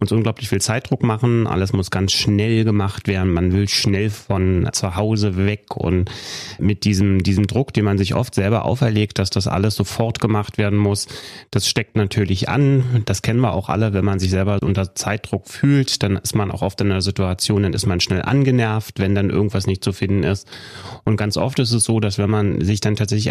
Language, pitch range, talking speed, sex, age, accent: German, 100-115 Hz, 220 wpm, male, 30-49, German